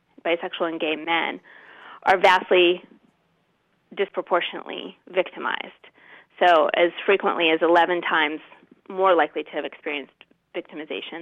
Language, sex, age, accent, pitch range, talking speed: English, female, 30-49, American, 170-205 Hz, 105 wpm